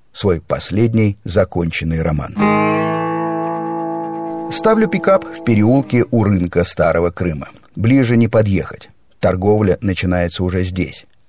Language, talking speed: Russian, 100 wpm